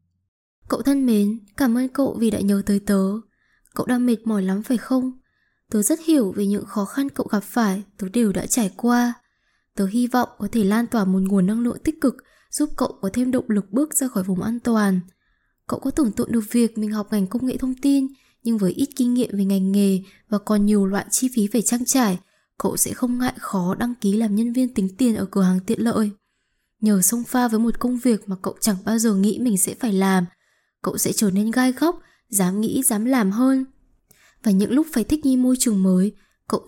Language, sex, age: Vietnamese, female, 10-29